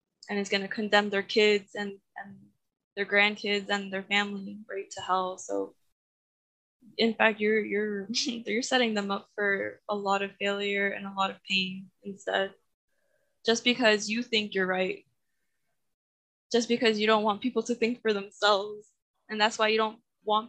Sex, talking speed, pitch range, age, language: female, 175 wpm, 200-220 Hz, 10-29, English